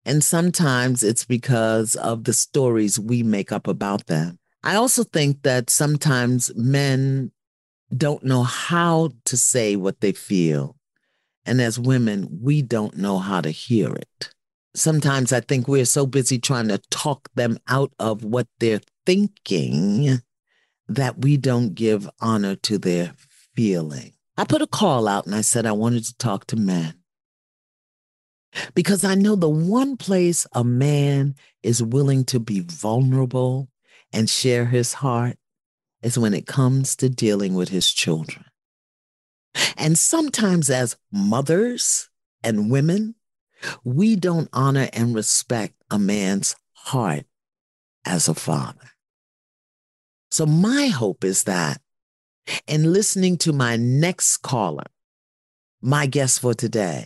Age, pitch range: 40-59, 110-150 Hz